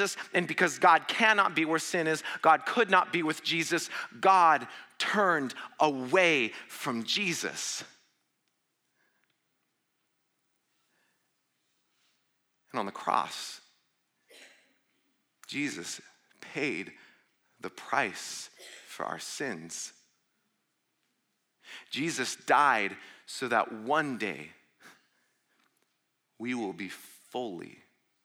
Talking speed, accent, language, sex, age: 85 wpm, American, English, male, 40-59